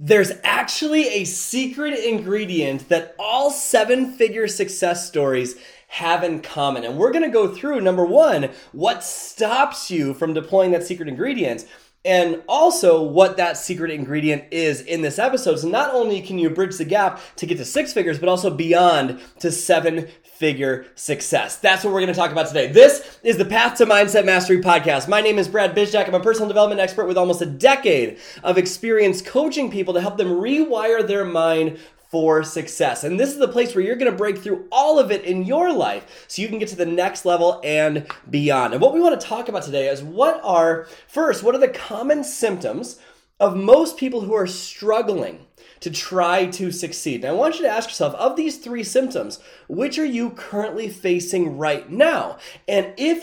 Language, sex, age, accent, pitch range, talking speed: English, male, 20-39, American, 170-235 Hz, 200 wpm